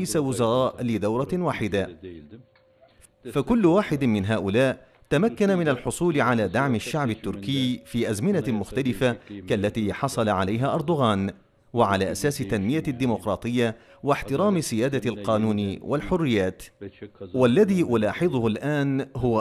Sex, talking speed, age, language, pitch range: male, 100 wpm, 40-59, Arabic, 105-140 Hz